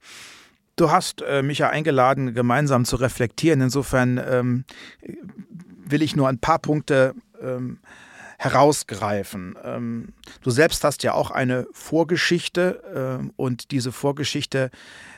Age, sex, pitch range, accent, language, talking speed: 40-59, male, 130-155 Hz, German, German, 120 wpm